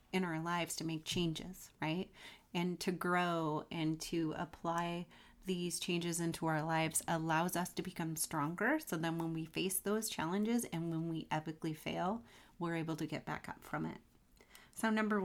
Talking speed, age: 175 wpm, 30-49